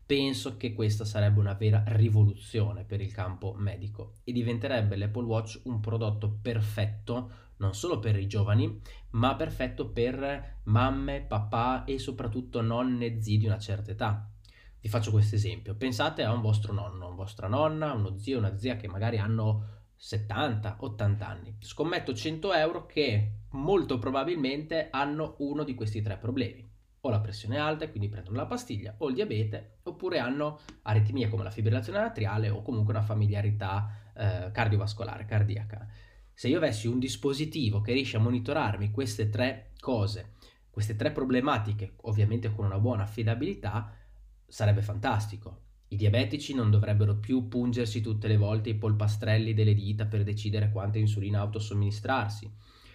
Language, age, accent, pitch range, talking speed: Italian, 20-39, native, 105-125 Hz, 155 wpm